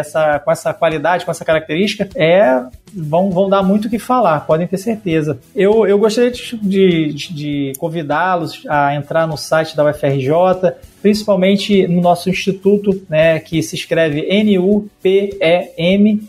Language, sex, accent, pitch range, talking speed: Portuguese, male, Brazilian, 150-185 Hz, 145 wpm